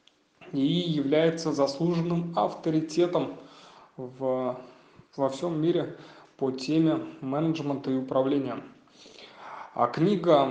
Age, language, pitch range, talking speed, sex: 20-39, Russian, 135-170 Hz, 85 wpm, male